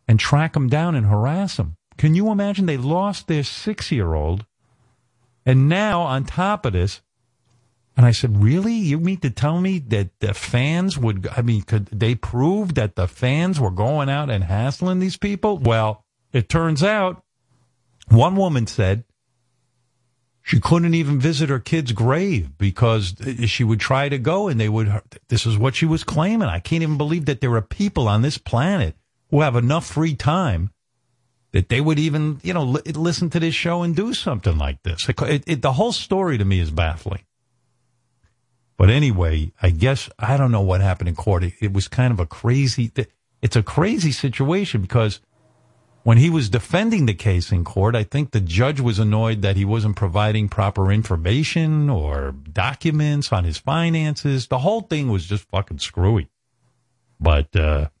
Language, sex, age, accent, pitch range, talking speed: English, male, 50-69, American, 105-150 Hz, 180 wpm